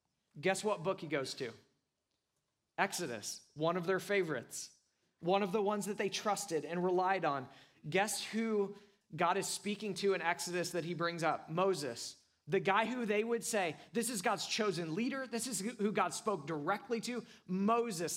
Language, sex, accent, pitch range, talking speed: English, male, American, 140-195 Hz, 175 wpm